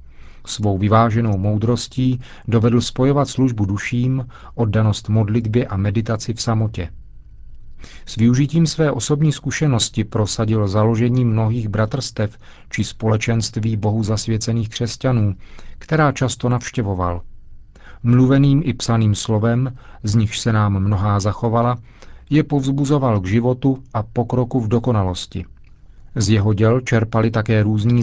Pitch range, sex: 105-125 Hz, male